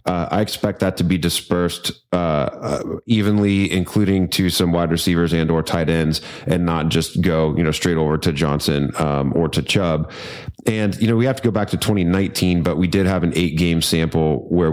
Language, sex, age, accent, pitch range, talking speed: English, male, 30-49, American, 80-95 Hz, 210 wpm